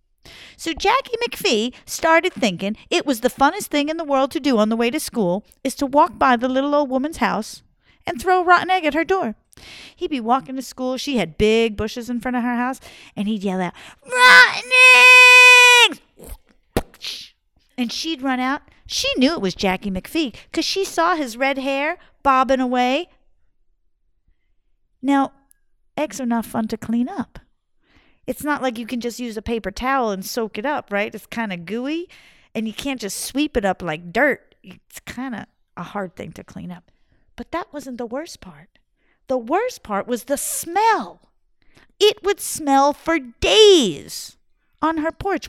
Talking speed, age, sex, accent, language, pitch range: 185 wpm, 40-59, female, American, English, 225-315 Hz